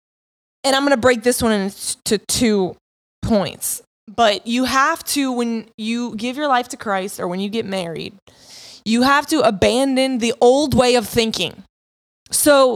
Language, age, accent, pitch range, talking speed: English, 20-39, American, 220-265 Hz, 170 wpm